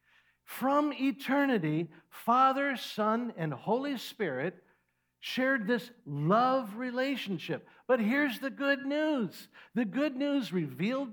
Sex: male